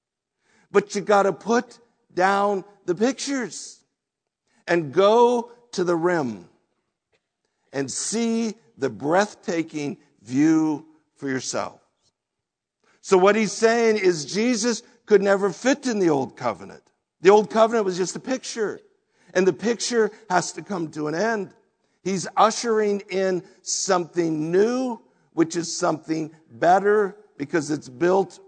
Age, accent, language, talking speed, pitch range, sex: 60-79, American, English, 130 wpm, 155-210 Hz, male